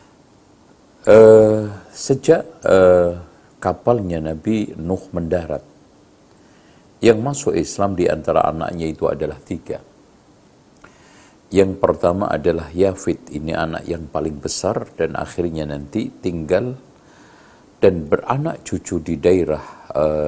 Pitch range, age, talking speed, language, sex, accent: 80-100 Hz, 50-69, 105 wpm, Indonesian, male, native